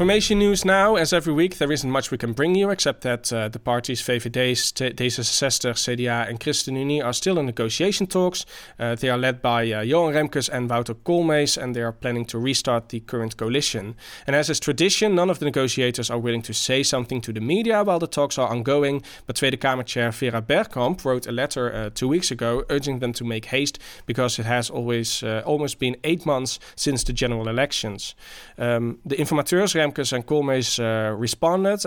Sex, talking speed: male, 205 wpm